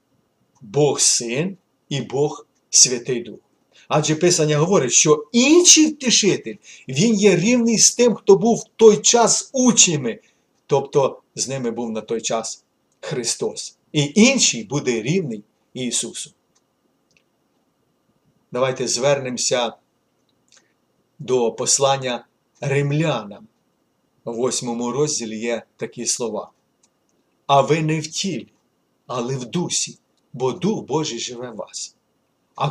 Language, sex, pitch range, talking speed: Ukrainian, male, 125-210 Hz, 115 wpm